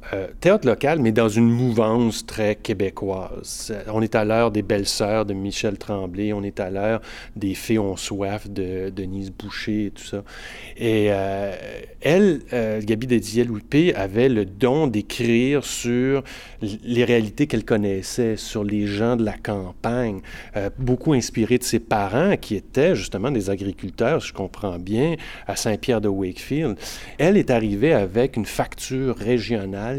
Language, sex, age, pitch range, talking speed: French, male, 30-49, 105-130 Hz, 155 wpm